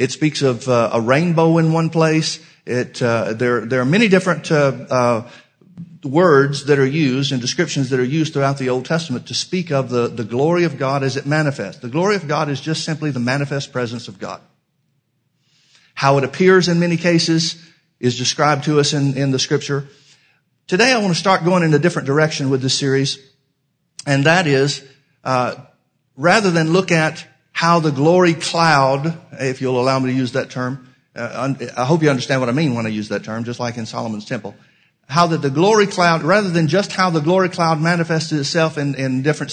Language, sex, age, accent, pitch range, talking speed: English, male, 50-69, American, 135-165 Hz, 210 wpm